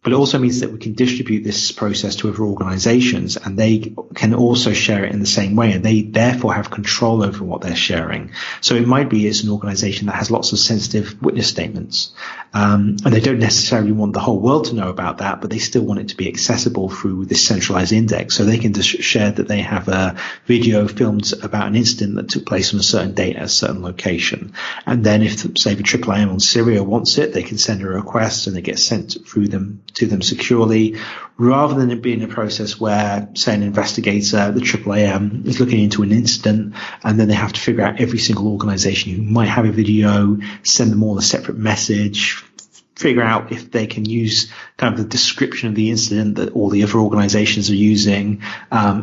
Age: 40-59